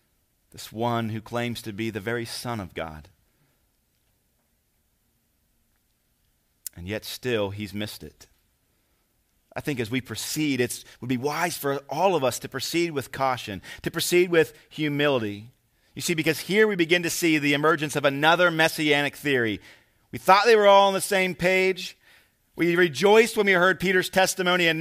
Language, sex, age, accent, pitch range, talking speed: English, male, 40-59, American, 120-175 Hz, 170 wpm